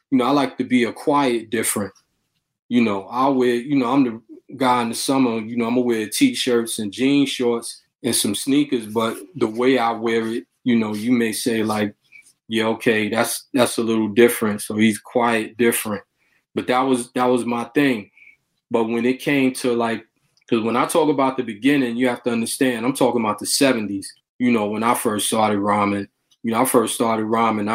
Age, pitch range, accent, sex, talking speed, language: 20-39, 110-130 Hz, American, male, 210 wpm, English